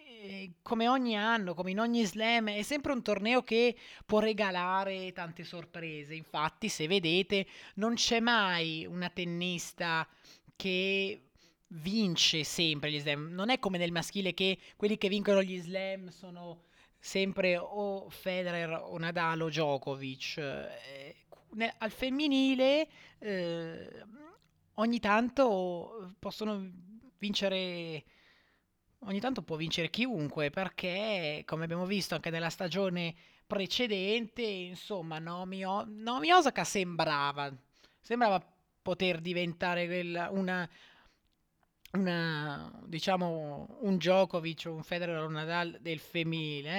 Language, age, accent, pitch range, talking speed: Italian, 20-39, native, 165-205 Hz, 115 wpm